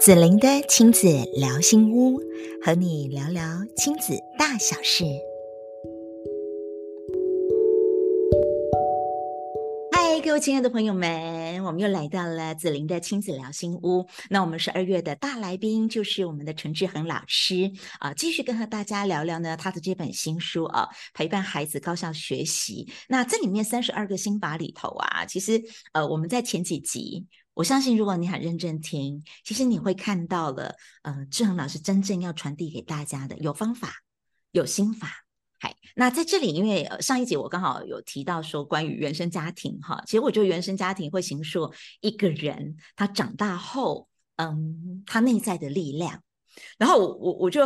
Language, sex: Chinese, female